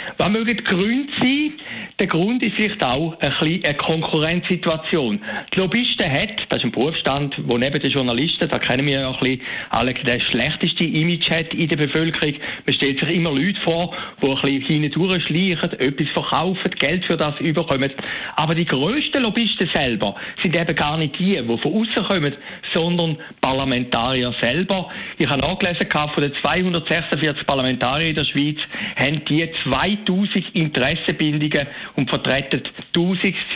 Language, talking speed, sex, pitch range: German, 170 wpm, male, 140-190 Hz